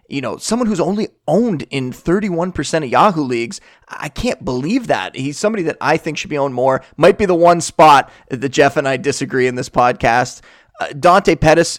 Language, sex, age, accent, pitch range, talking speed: English, male, 30-49, American, 120-150 Hz, 205 wpm